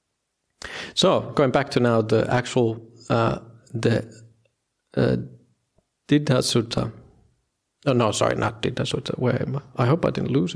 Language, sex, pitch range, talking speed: English, male, 115-130 Hz, 150 wpm